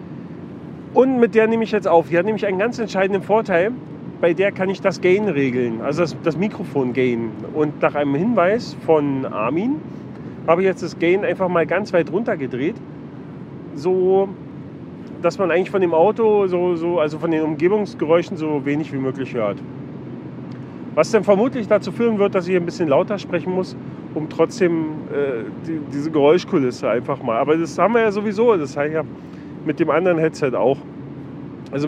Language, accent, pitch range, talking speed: German, German, 145-190 Hz, 180 wpm